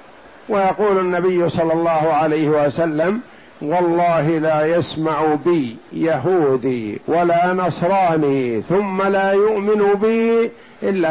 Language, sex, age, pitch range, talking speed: Arabic, male, 60-79, 160-195 Hz, 95 wpm